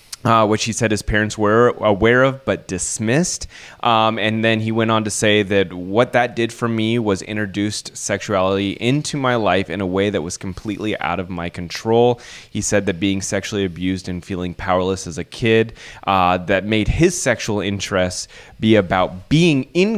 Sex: male